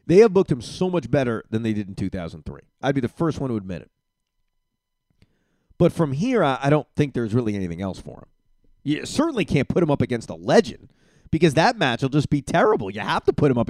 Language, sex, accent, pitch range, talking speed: English, male, American, 110-160 Hz, 235 wpm